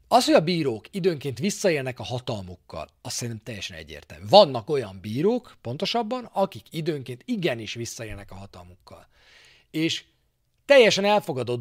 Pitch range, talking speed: 110-185 Hz, 130 wpm